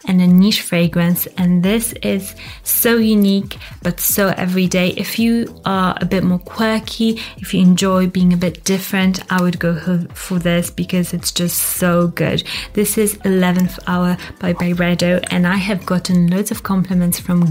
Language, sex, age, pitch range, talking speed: English, female, 20-39, 175-195 Hz, 170 wpm